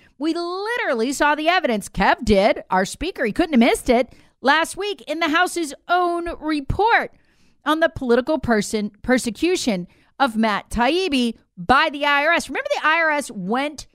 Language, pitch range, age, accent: English, 225-295 Hz, 40-59, American